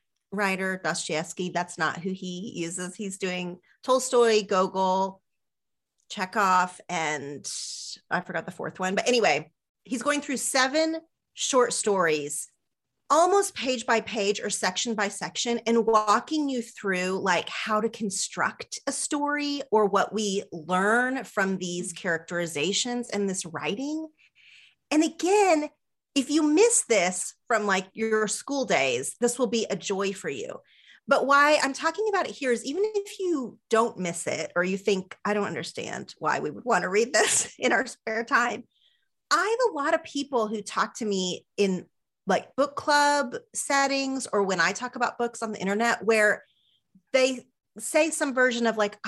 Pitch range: 190-270 Hz